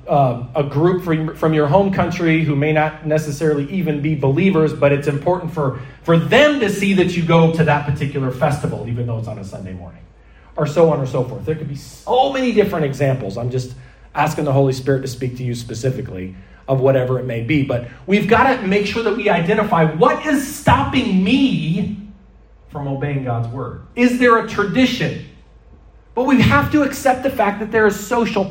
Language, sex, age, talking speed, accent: English, male, 30-49, 205 wpm, American